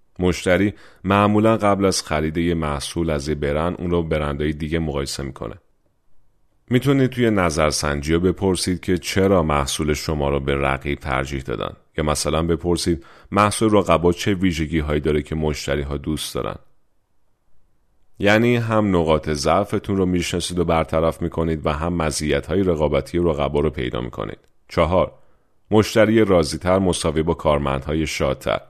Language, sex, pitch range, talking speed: English, male, 75-95 Hz, 130 wpm